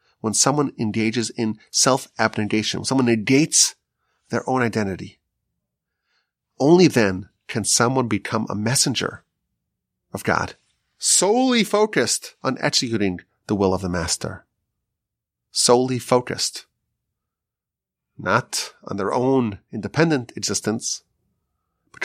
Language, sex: English, male